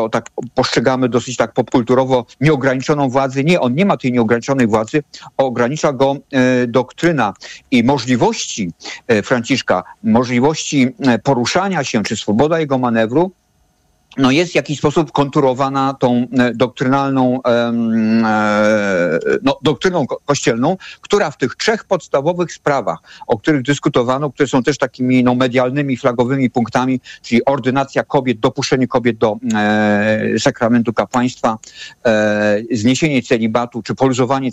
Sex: male